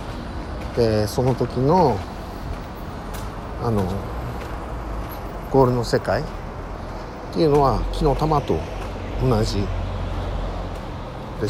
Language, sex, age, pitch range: Japanese, male, 50-69, 90-120 Hz